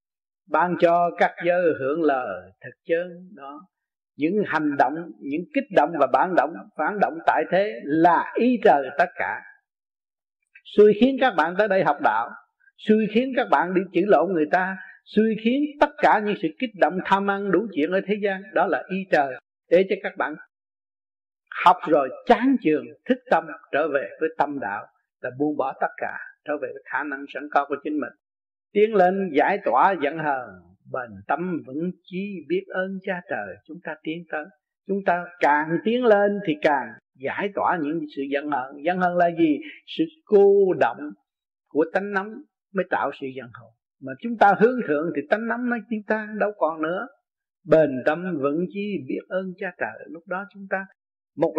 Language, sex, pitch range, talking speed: Vietnamese, male, 155-215 Hz, 195 wpm